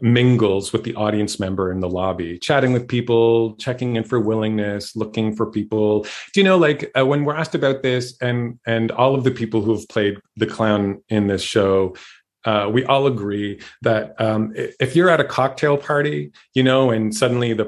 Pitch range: 100-120 Hz